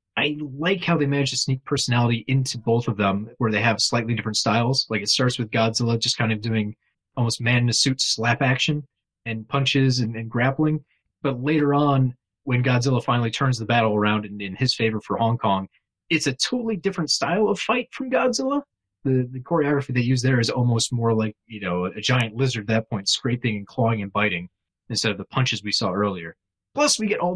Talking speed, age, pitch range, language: 210 wpm, 30-49, 110-135 Hz, English